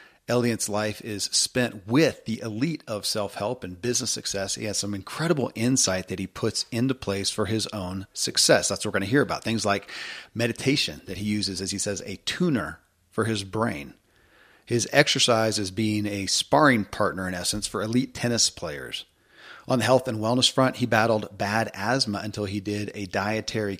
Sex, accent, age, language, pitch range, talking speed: male, American, 40-59, English, 105-125 Hz, 190 wpm